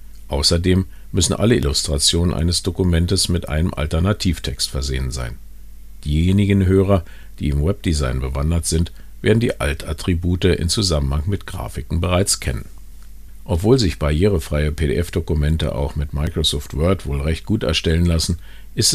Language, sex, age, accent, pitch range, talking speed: German, male, 50-69, German, 70-95 Hz, 130 wpm